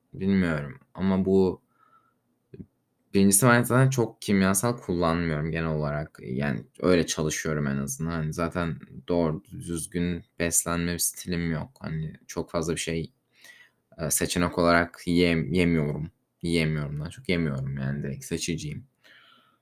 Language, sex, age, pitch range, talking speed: Turkish, male, 20-39, 85-100 Hz, 120 wpm